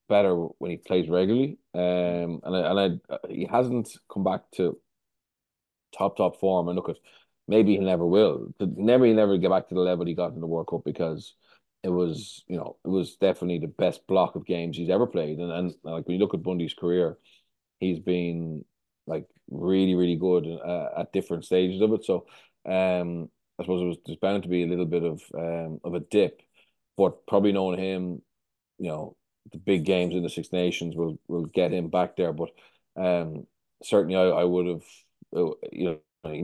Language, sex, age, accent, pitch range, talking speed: English, male, 30-49, Irish, 85-95 Hz, 200 wpm